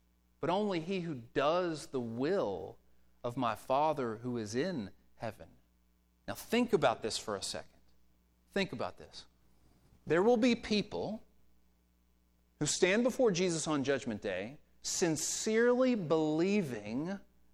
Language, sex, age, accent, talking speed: English, male, 40-59, American, 125 wpm